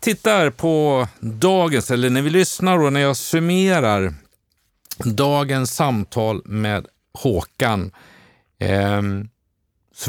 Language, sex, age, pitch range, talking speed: Swedish, male, 50-69, 100-135 Hz, 95 wpm